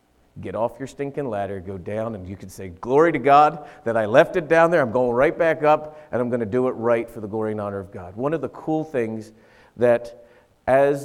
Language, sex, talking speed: English, male, 250 wpm